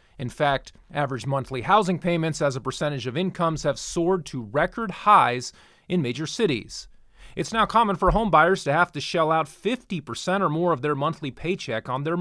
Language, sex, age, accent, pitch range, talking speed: English, male, 30-49, American, 130-185 Hz, 185 wpm